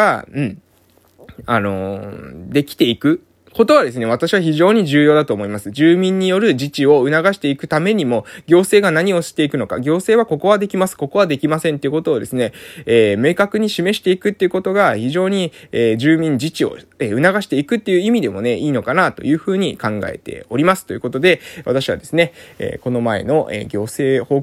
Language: Japanese